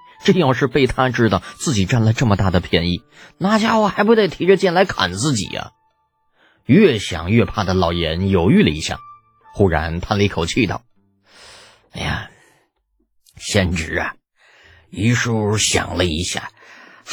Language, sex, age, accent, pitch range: Chinese, male, 30-49, native, 95-155 Hz